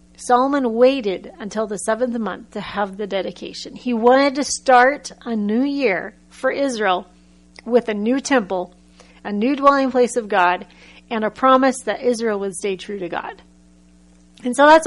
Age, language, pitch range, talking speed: 40-59, English, 180-265 Hz, 170 wpm